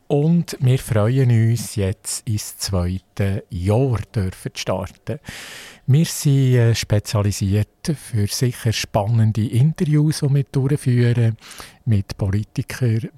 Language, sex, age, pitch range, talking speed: German, male, 50-69, 105-135 Hz, 100 wpm